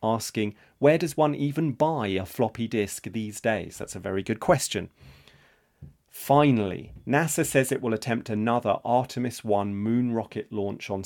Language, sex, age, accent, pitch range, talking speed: English, male, 40-59, British, 105-130 Hz, 155 wpm